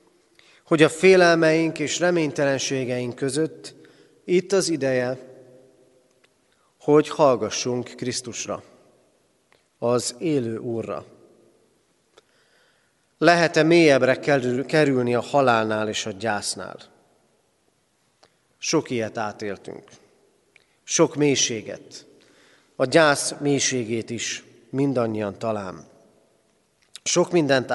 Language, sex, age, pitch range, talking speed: Hungarian, male, 40-59, 120-155 Hz, 80 wpm